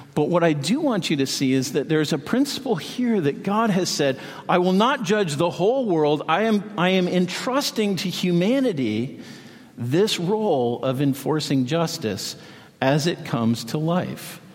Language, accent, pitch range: English, American, 130-180 Hz